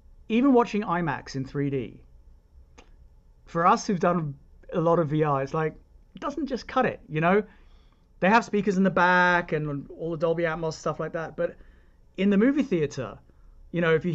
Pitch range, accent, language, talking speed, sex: 130-185 Hz, British, English, 190 wpm, male